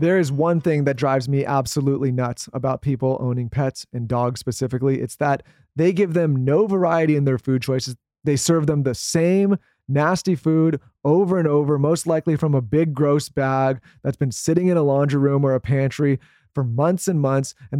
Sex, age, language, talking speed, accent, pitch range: male, 30-49, English, 200 wpm, American, 135-160 Hz